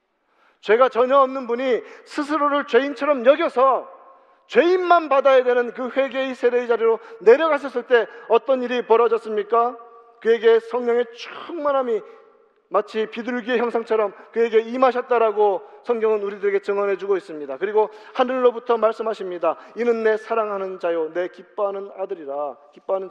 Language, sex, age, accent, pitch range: Korean, male, 40-59, native, 210-285 Hz